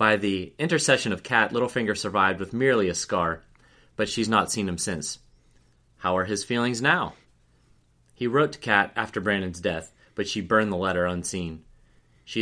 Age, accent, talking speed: 30-49, American, 175 wpm